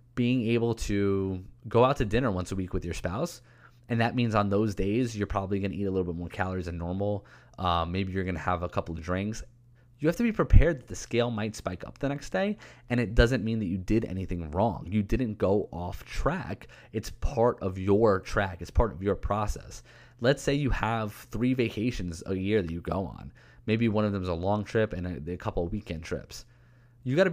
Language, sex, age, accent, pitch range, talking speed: English, male, 20-39, American, 95-120 Hz, 240 wpm